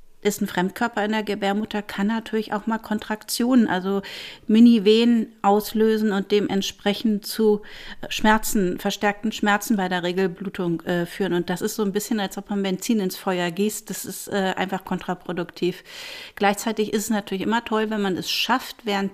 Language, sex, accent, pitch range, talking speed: German, female, German, 190-220 Hz, 170 wpm